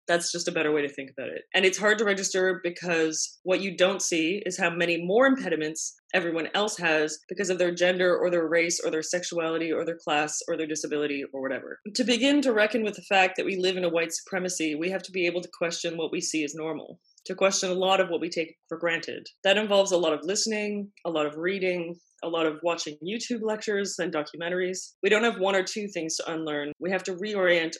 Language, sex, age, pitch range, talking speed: English, female, 20-39, 165-195 Hz, 240 wpm